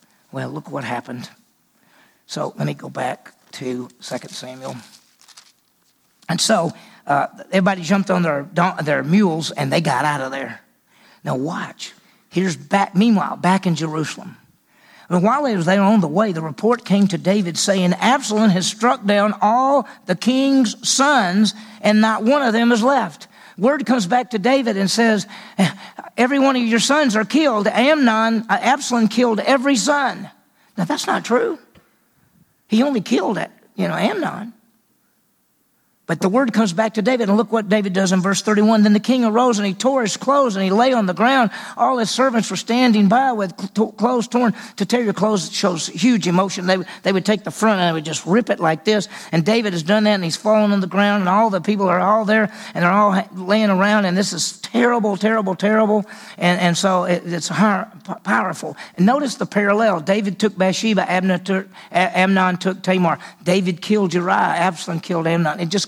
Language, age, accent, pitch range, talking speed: English, 50-69, American, 185-230 Hz, 190 wpm